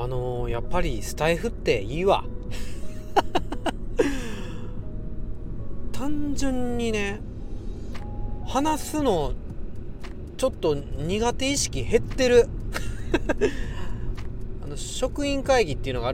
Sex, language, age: male, Japanese, 40-59